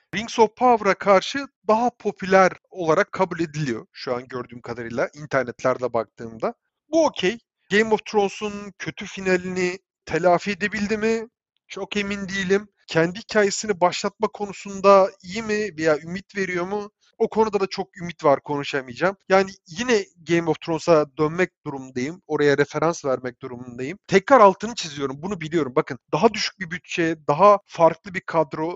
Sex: male